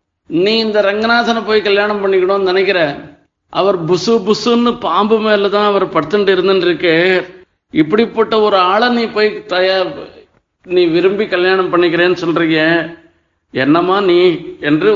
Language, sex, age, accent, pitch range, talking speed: Tamil, male, 50-69, native, 185-235 Hz, 110 wpm